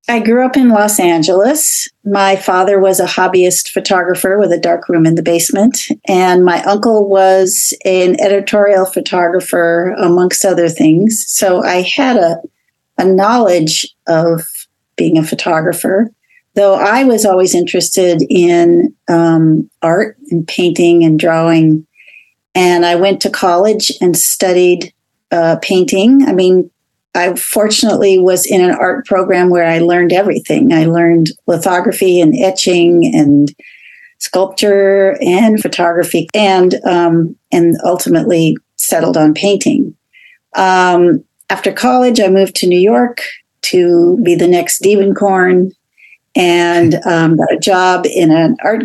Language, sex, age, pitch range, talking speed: English, female, 40-59, 175-205 Hz, 135 wpm